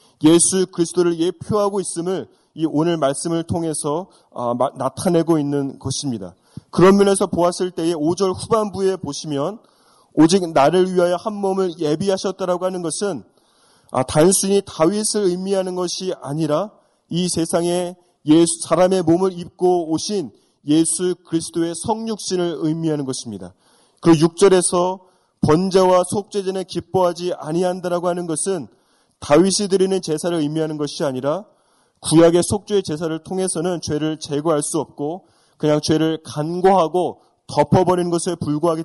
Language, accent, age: Korean, native, 30-49